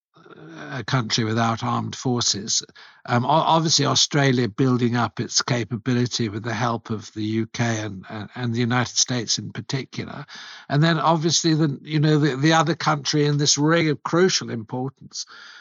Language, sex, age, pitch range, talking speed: English, male, 60-79, 110-140 Hz, 155 wpm